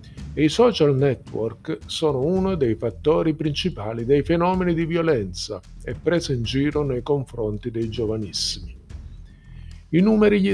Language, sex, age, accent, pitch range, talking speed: Italian, male, 50-69, native, 115-155 Hz, 135 wpm